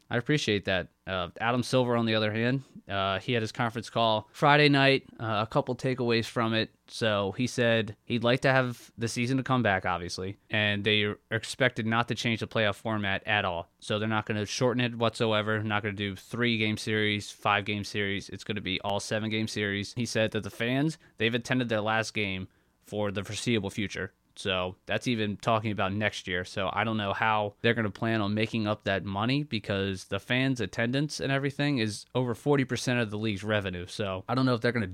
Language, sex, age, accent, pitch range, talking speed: English, male, 20-39, American, 105-120 Hz, 225 wpm